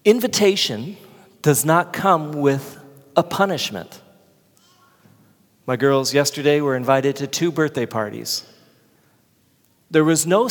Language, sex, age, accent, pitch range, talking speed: English, male, 40-59, American, 135-185 Hz, 110 wpm